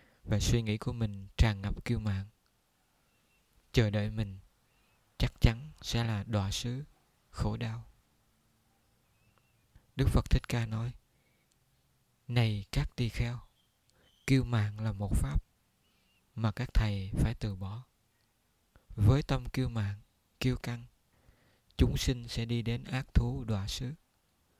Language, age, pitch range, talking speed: Vietnamese, 20-39, 100-125 Hz, 135 wpm